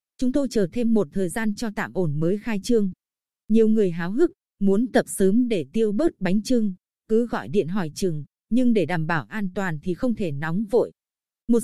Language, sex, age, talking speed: Vietnamese, female, 20-39, 215 wpm